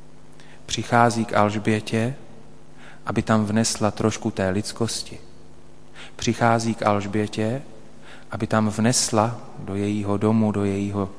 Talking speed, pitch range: 105 wpm, 100-115 Hz